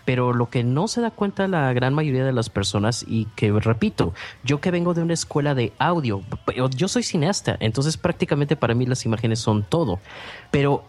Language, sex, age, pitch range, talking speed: Spanish, male, 30-49, 115-150 Hz, 200 wpm